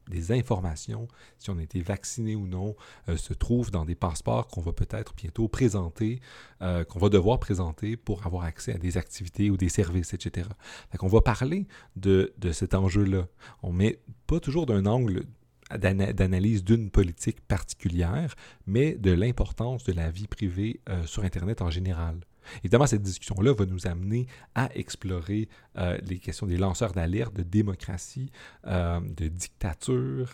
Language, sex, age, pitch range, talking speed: French, male, 40-59, 90-115 Hz, 165 wpm